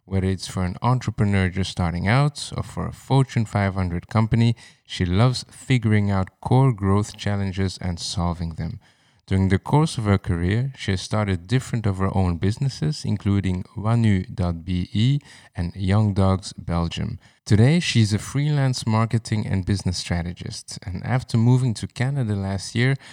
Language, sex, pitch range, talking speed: English, male, 95-120 Hz, 155 wpm